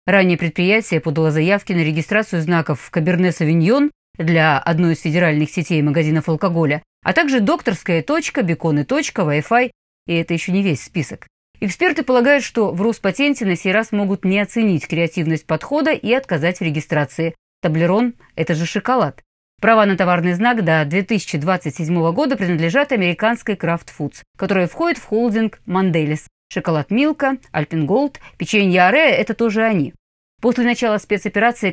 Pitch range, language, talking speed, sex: 165-230 Hz, Russian, 145 wpm, female